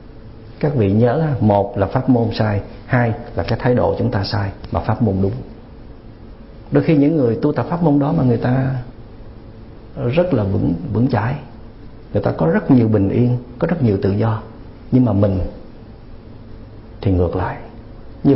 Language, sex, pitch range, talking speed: Vietnamese, male, 110-140 Hz, 185 wpm